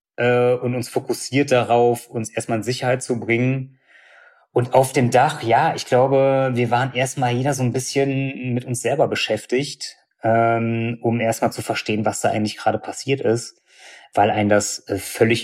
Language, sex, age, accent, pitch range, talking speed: German, male, 20-39, German, 110-125 Hz, 165 wpm